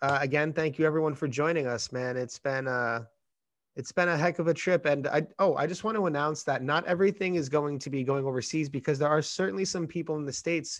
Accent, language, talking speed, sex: American, English, 250 wpm, male